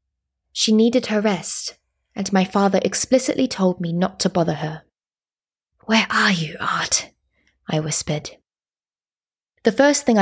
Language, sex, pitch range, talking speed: English, female, 165-225 Hz, 135 wpm